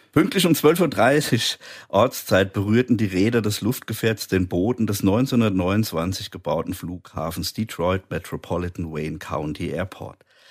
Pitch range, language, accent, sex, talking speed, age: 90-115 Hz, German, German, male, 120 wpm, 50-69